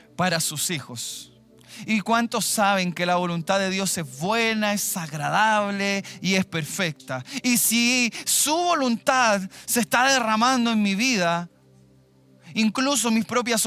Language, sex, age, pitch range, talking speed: Spanish, male, 20-39, 200-285 Hz, 135 wpm